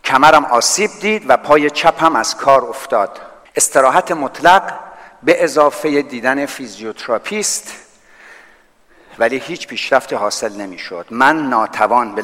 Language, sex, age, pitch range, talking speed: Persian, male, 50-69, 135-200 Hz, 115 wpm